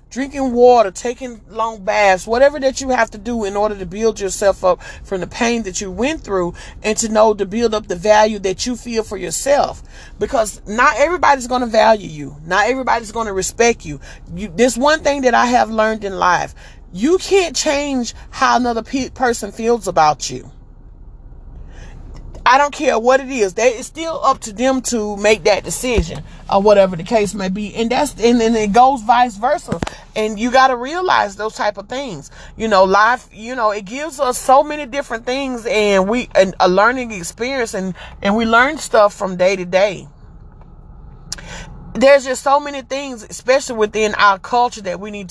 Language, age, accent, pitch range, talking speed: English, 40-59, American, 195-250 Hz, 195 wpm